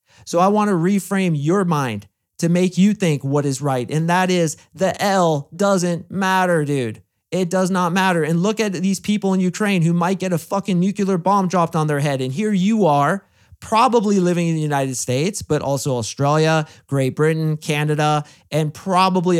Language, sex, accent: English, male, American